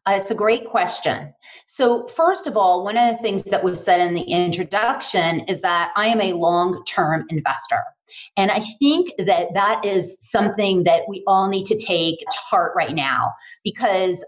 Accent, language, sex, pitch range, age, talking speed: American, English, female, 180-235 Hz, 30-49, 185 wpm